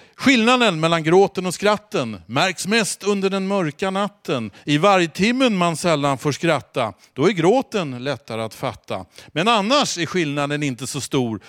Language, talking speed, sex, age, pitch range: Swedish, 160 wpm, male, 50-69, 130-190 Hz